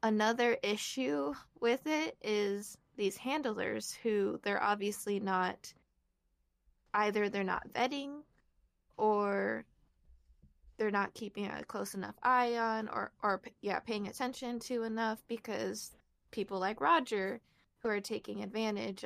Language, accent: English, American